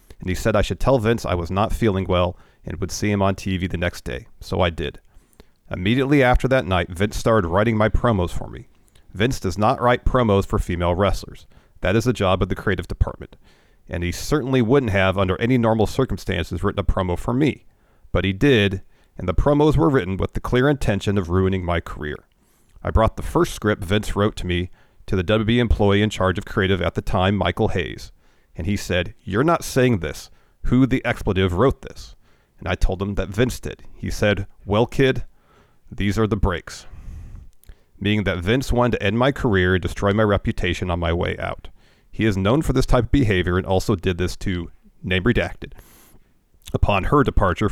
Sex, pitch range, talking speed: male, 90-115 Hz, 205 wpm